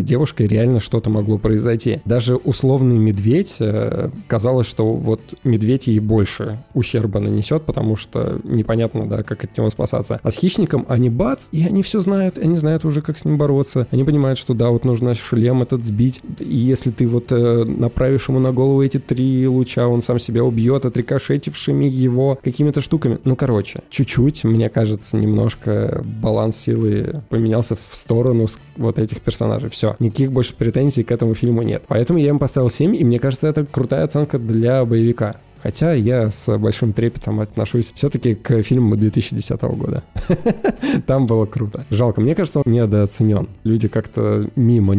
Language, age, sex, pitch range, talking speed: Russian, 20-39, male, 110-130 Hz, 170 wpm